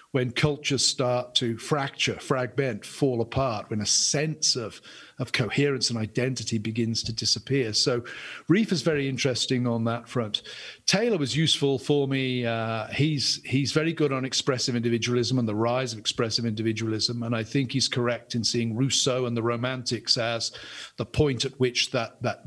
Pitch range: 115-140 Hz